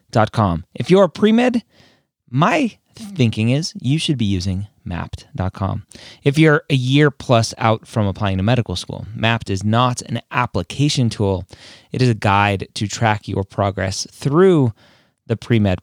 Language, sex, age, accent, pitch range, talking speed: English, male, 30-49, American, 100-125 Hz, 155 wpm